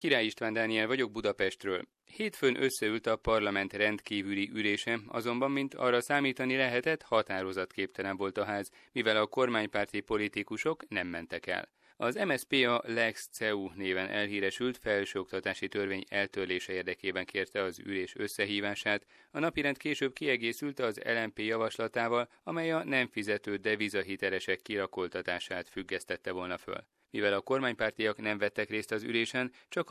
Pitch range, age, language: 100-120 Hz, 30-49, Hungarian